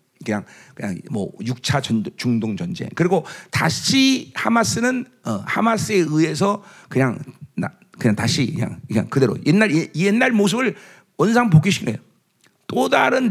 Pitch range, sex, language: 150-215 Hz, male, Korean